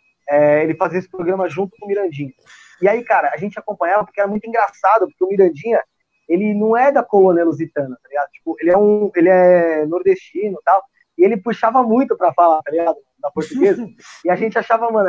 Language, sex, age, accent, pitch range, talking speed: Portuguese, male, 20-39, Brazilian, 180-235 Hz, 215 wpm